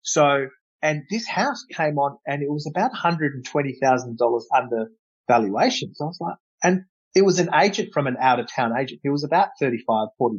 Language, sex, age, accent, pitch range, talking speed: English, male, 40-59, Australian, 130-180 Hz, 180 wpm